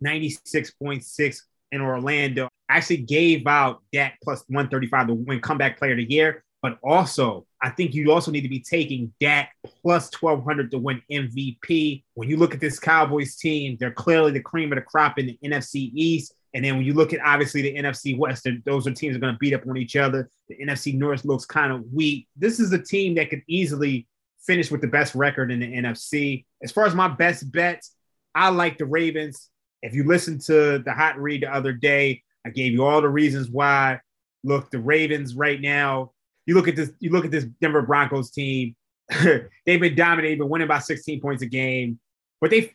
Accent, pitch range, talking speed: American, 130-155 Hz, 210 wpm